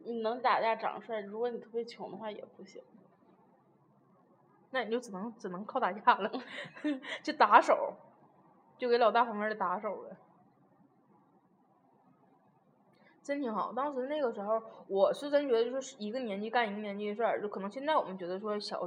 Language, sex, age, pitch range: Chinese, female, 20-39, 210-285 Hz